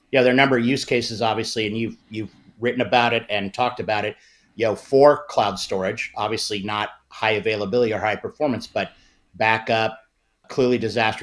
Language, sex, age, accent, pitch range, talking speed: English, male, 50-69, American, 100-120 Hz, 190 wpm